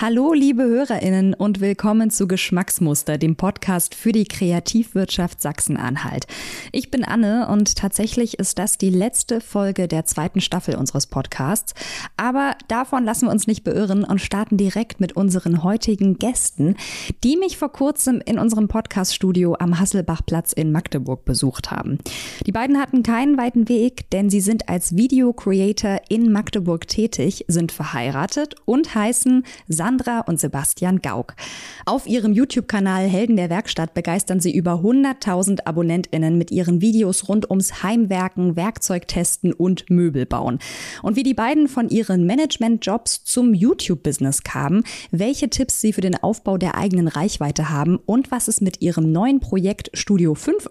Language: German